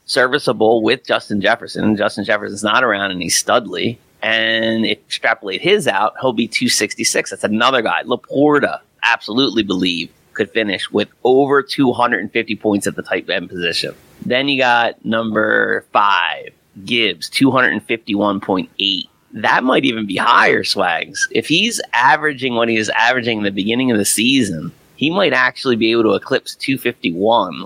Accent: American